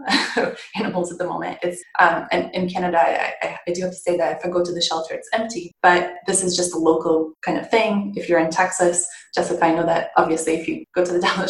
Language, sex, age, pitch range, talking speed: English, female, 20-39, 170-190 Hz, 255 wpm